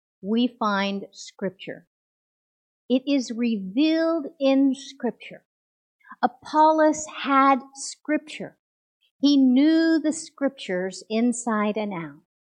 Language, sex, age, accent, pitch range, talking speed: English, female, 50-69, American, 205-270 Hz, 85 wpm